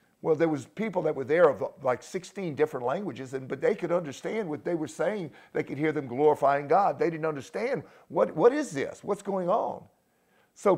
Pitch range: 145-190 Hz